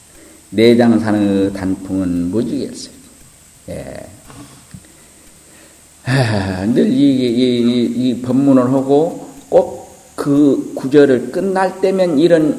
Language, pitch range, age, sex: Korean, 100-140 Hz, 50-69, male